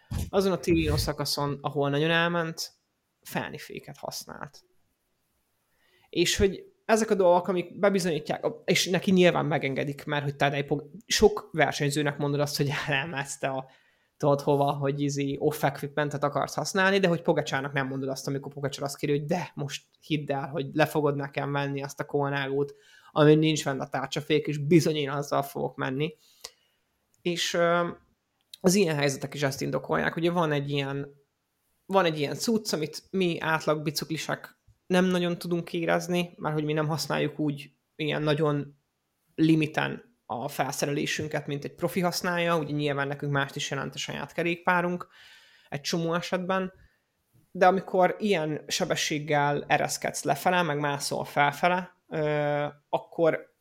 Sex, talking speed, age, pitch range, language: male, 145 wpm, 20-39, 145-175 Hz, Hungarian